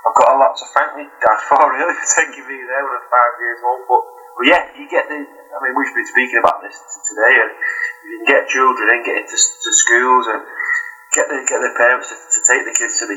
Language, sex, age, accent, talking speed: English, male, 20-39, British, 255 wpm